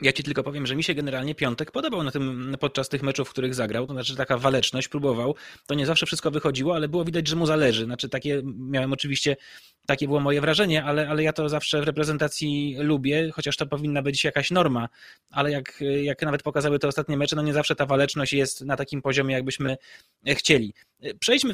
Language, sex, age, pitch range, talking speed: Polish, male, 20-39, 140-160 Hz, 215 wpm